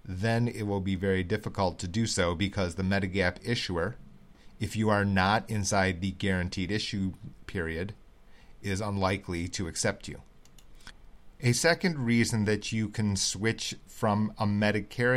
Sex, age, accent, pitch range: male, 40-59, American, 95-115 Hz